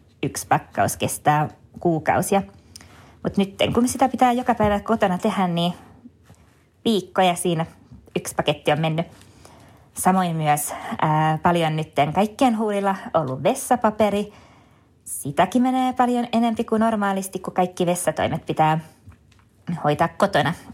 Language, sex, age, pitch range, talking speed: Finnish, female, 20-39, 155-200 Hz, 120 wpm